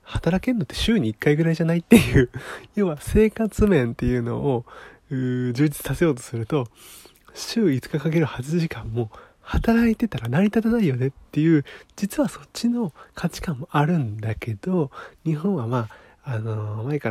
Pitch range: 115-165 Hz